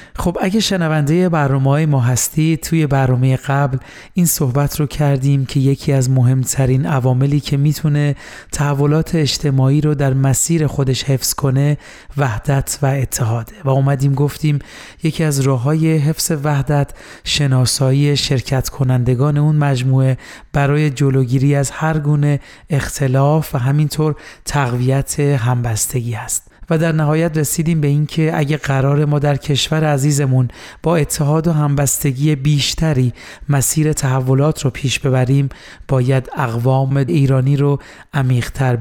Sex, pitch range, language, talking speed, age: male, 130-150 Hz, Persian, 130 wpm, 40-59